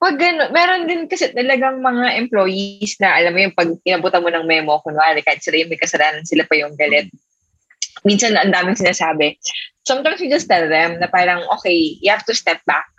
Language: English